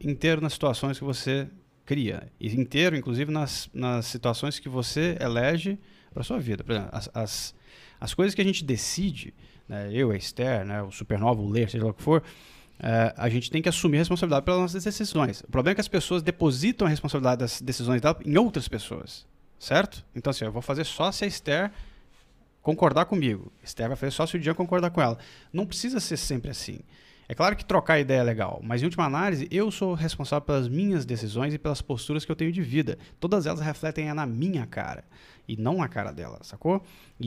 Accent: Brazilian